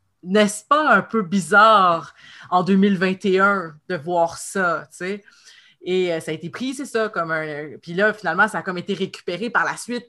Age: 30-49